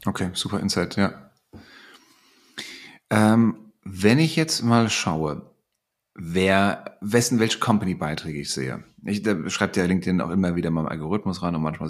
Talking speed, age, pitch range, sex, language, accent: 150 wpm, 30-49, 85-110 Hz, male, German, German